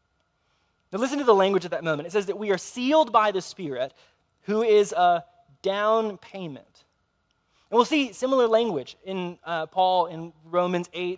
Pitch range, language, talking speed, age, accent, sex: 140-200 Hz, English, 175 wpm, 20-39, American, male